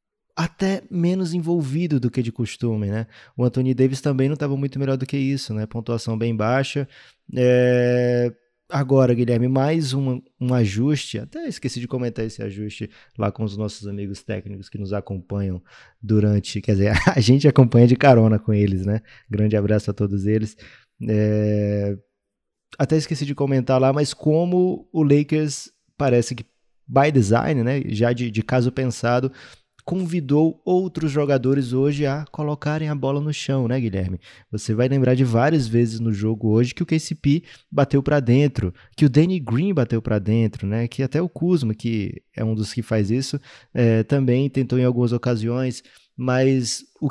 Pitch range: 110-140 Hz